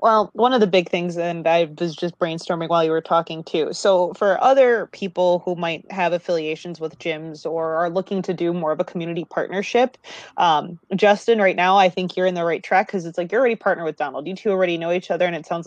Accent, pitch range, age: American, 170-195 Hz, 20-39